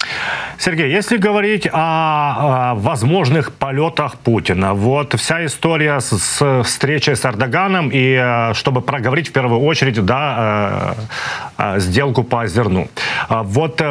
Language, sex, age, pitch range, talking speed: Ukrainian, male, 30-49, 115-145 Hz, 110 wpm